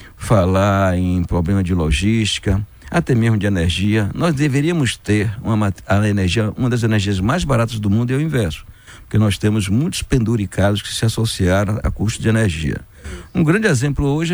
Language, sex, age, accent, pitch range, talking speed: Portuguese, male, 60-79, Brazilian, 95-130 Hz, 175 wpm